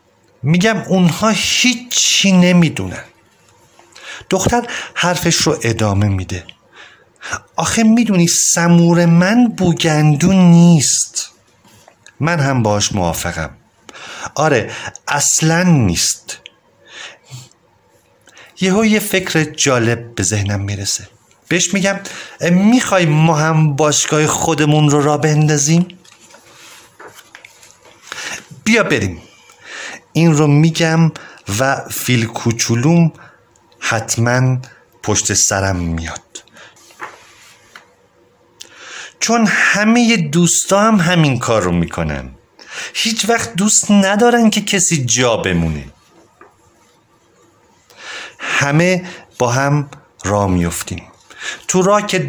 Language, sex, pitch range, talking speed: Persian, male, 115-180 Hz, 85 wpm